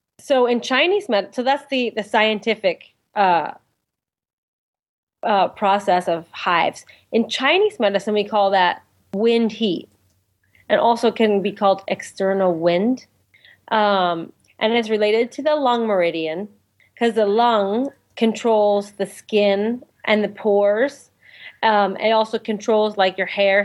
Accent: American